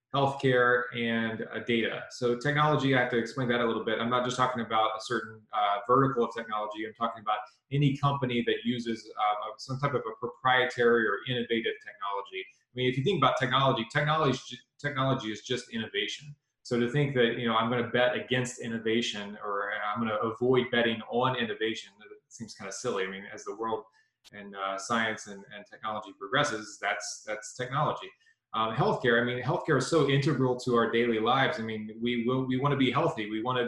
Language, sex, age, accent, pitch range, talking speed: English, male, 20-39, American, 110-130 Hz, 200 wpm